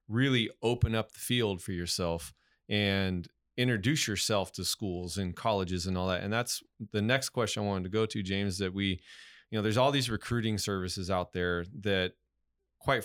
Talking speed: 190 wpm